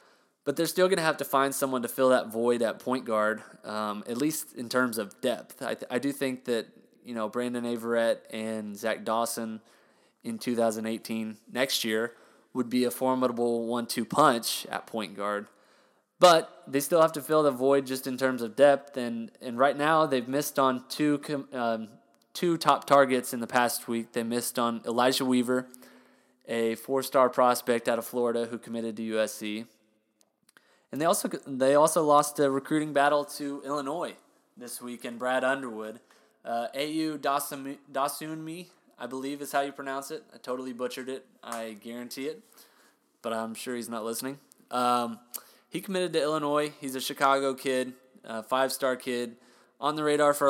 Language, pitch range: English, 115-140 Hz